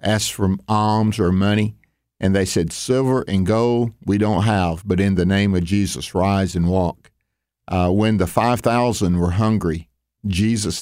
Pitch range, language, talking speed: 95-120 Hz, English, 165 wpm